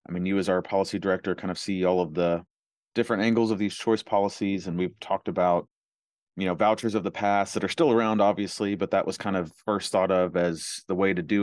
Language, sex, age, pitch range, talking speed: English, male, 30-49, 90-105 Hz, 245 wpm